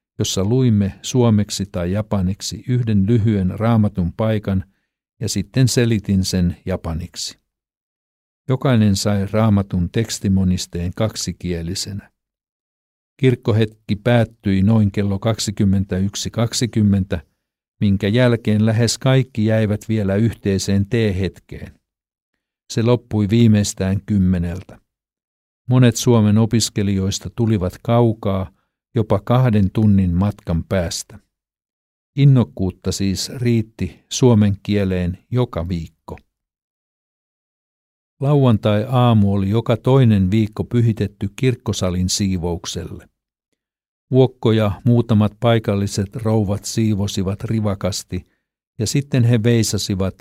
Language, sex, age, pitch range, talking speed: Finnish, male, 60-79, 95-115 Hz, 85 wpm